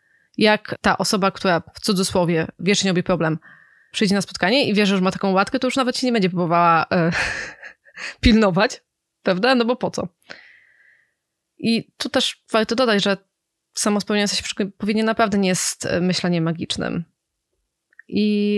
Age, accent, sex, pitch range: 20-39, native, female, 180-215 Hz